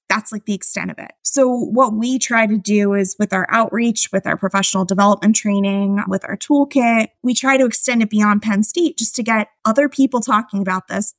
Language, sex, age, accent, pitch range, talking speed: English, female, 20-39, American, 190-220 Hz, 215 wpm